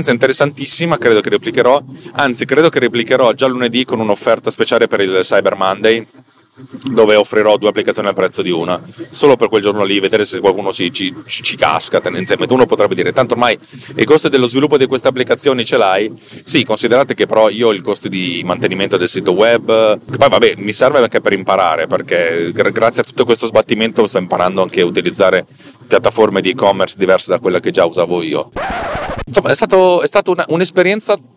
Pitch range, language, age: 100-145 Hz, Italian, 30-49